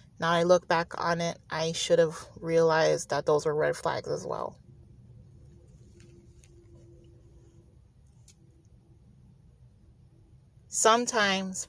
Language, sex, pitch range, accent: English, female, 125-180 Hz, American